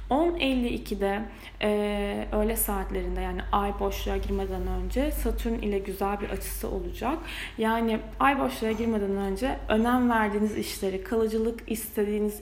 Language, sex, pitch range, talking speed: Turkish, female, 205-240 Hz, 115 wpm